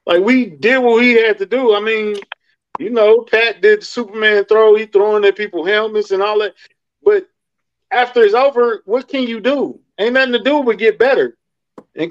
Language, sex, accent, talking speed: English, male, American, 205 wpm